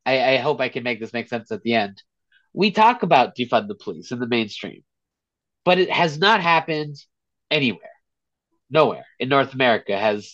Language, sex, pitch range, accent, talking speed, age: English, male, 120-180 Hz, American, 185 wpm, 30-49